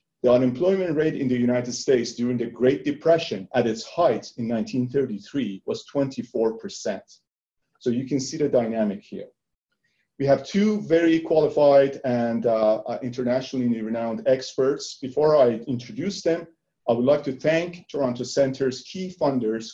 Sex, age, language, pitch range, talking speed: male, 40-59, English, 120-150 Hz, 145 wpm